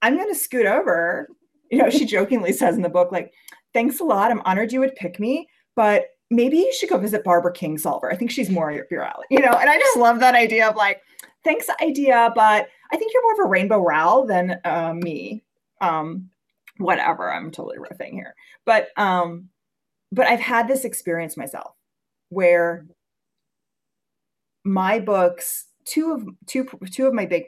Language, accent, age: English, American, 30-49